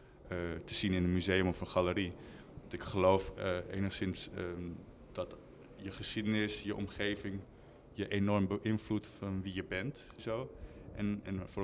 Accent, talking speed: Dutch, 155 wpm